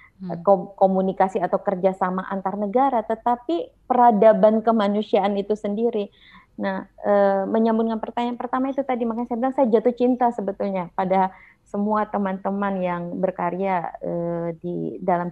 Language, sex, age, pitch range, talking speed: Indonesian, female, 30-49, 185-225 Hz, 125 wpm